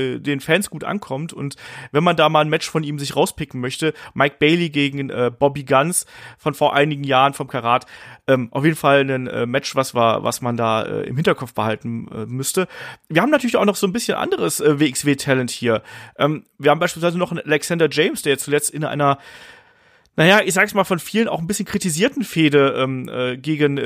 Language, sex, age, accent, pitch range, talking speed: German, male, 30-49, German, 140-185 Hz, 210 wpm